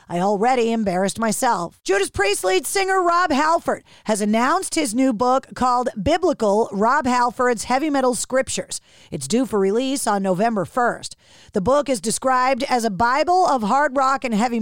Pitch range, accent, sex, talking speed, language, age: 230-295 Hz, American, female, 170 wpm, English, 40-59